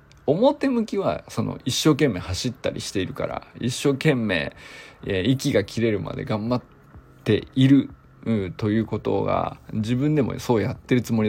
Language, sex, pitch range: Japanese, male, 95-140 Hz